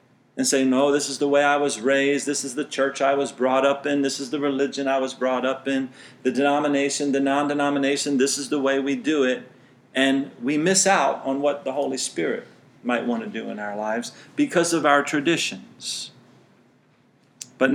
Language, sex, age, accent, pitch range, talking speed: English, male, 40-59, American, 135-165 Hz, 200 wpm